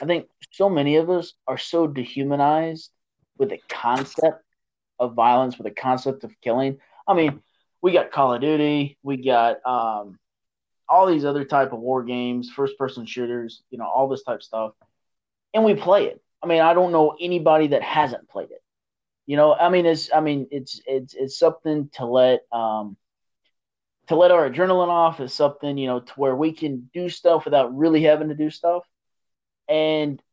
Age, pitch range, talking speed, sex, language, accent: 20-39, 125-160 Hz, 190 wpm, male, English, American